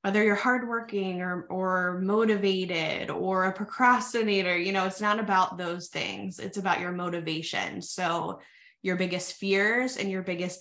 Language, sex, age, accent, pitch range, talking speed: English, female, 20-39, American, 175-205 Hz, 155 wpm